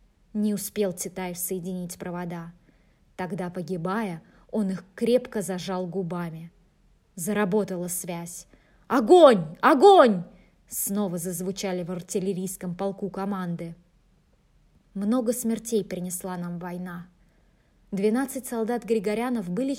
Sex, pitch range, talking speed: female, 180-210 Hz, 95 wpm